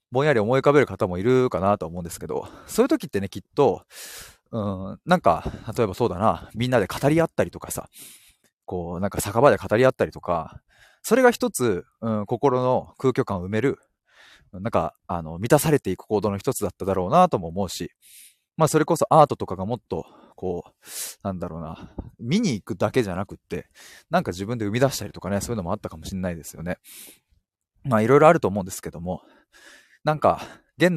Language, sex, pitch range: Japanese, male, 95-130 Hz